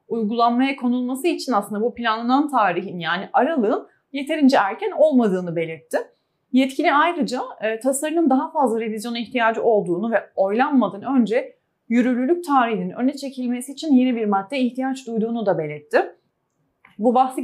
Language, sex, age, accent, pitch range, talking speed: Turkish, female, 30-49, native, 205-270 Hz, 130 wpm